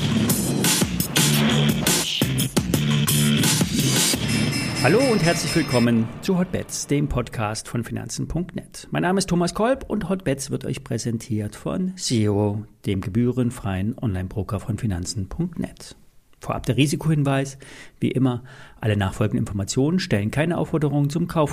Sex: male